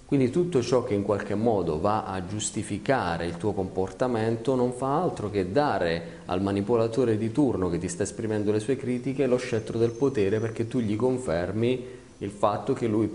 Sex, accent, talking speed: male, native, 185 wpm